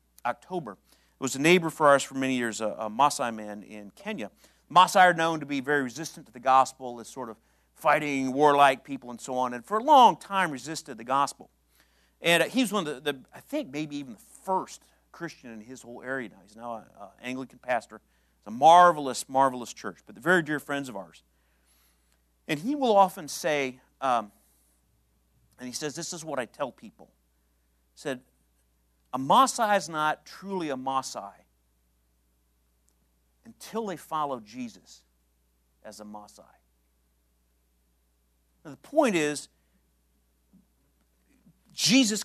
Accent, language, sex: American, English, male